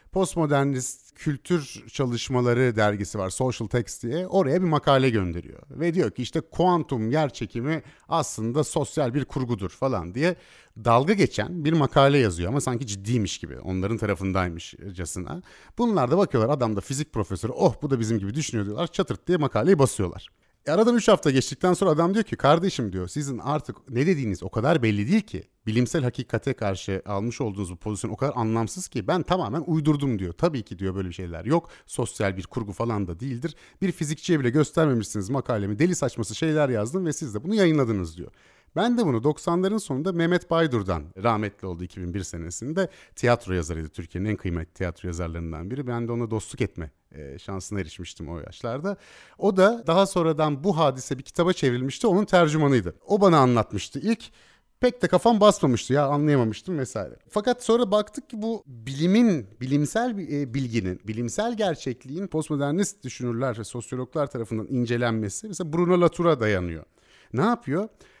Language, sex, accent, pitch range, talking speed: Turkish, male, native, 105-165 Hz, 165 wpm